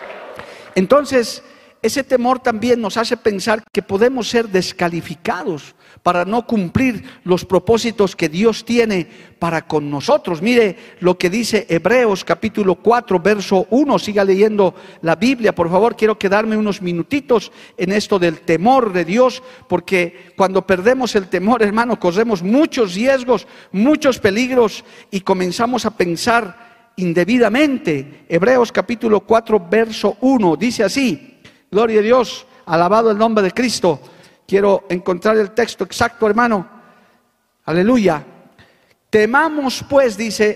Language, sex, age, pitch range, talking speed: Spanish, male, 50-69, 185-245 Hz, 130 wpm